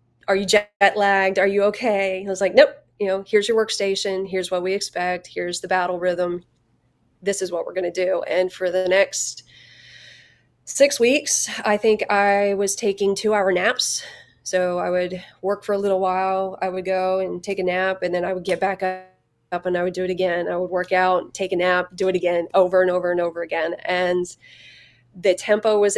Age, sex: 20-39, female